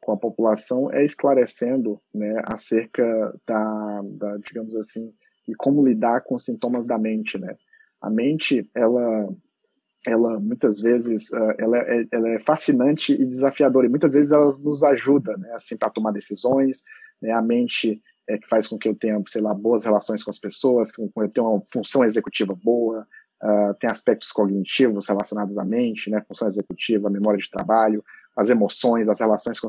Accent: Brazilian